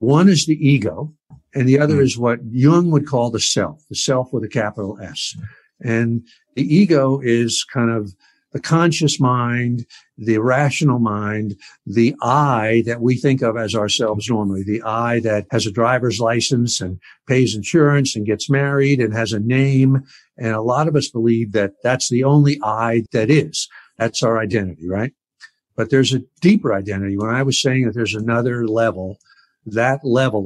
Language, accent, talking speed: English, American, 175 wpm